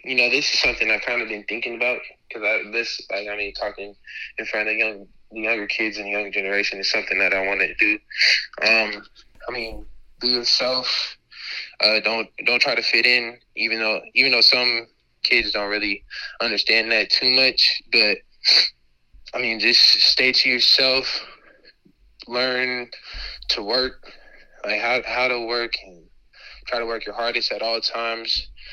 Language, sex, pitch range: English, male, 105-120 Hz